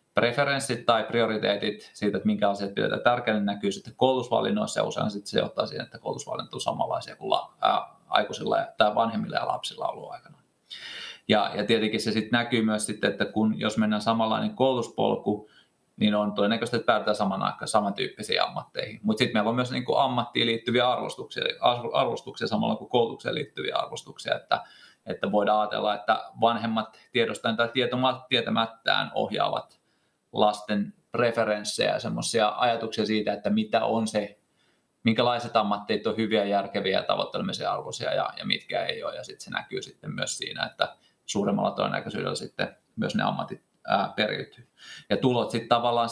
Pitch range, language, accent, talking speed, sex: 105-120 Hz, Finnish, native, 155 wpm, male